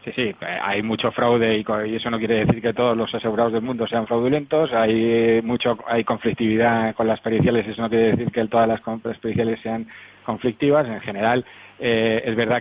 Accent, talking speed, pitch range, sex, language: Spanish, 200 wpm, 110-120 Hz, male, Spanish